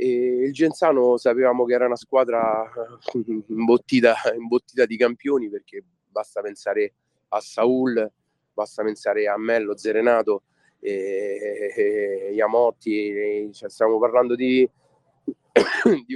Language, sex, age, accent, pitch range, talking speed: Italian, male, 30-49, native, 115-150 Hz, 105 wpm